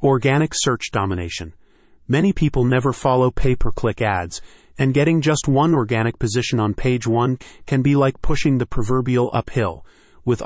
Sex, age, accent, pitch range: male, 30-49, American, 110-135 Hz